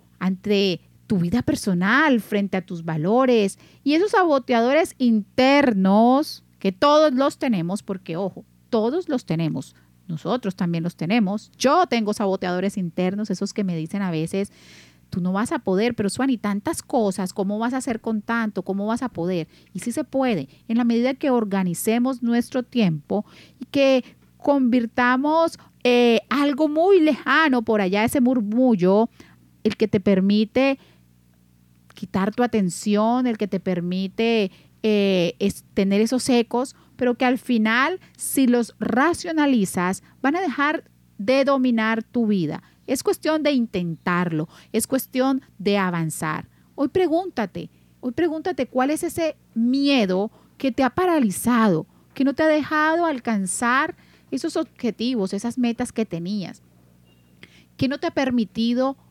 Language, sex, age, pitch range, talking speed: Spanish, female, 40-59, 195-265 Hz, 145 wpm